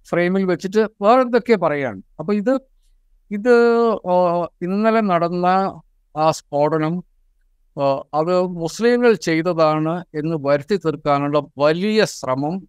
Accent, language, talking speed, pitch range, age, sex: native, Malayalam, 95 wpm, 150-190 Hz, 50-69, male